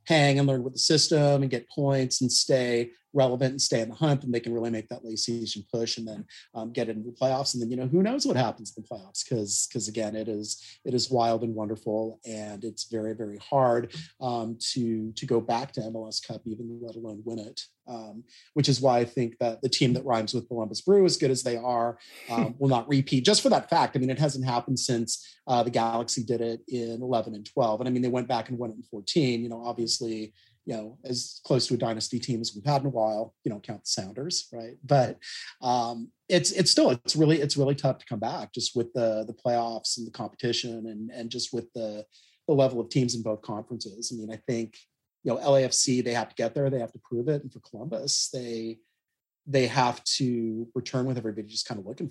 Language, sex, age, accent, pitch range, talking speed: English, male, 30-49, American, 115-130 Hz, 245 wpm